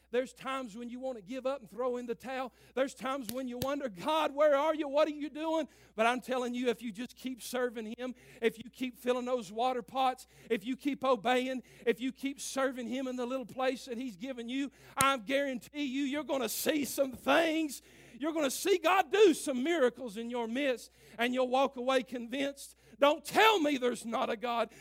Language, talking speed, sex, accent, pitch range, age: English, 225 wpm, male, American, 230-300 Hz, 50-69